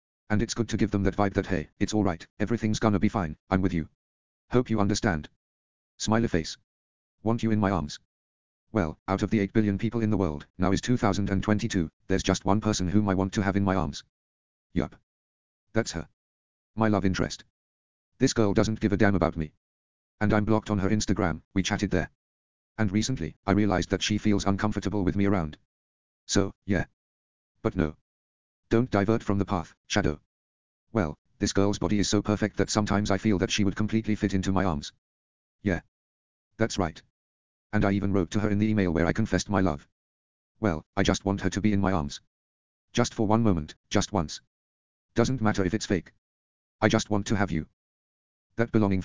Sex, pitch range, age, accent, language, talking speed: male, 70-105 Hz, 40-59, British, English, 200 wpm